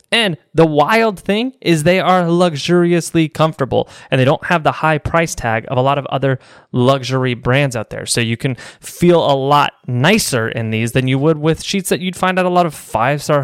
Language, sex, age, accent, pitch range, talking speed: English, male, 20-39, American, 130-165 Hz, 215 wpm